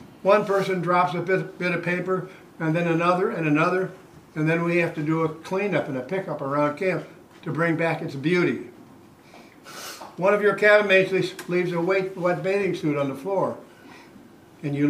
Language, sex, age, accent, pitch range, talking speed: English, male, 60-79, American, 170-200 Hz, 190 wpm